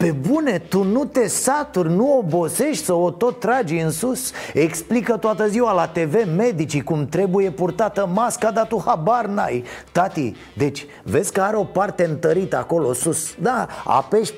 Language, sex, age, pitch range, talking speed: Romanian, male, 30-49, 170-245 Hz, 165 wpm